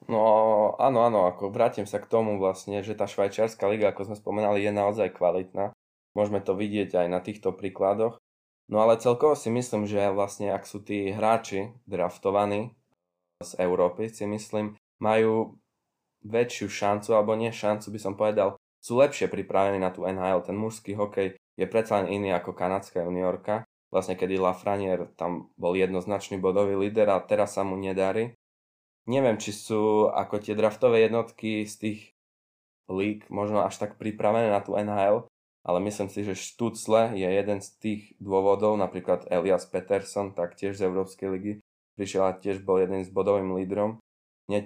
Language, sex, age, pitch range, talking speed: Slovak, male, 20-39, 95-105 Hz, 165 wpm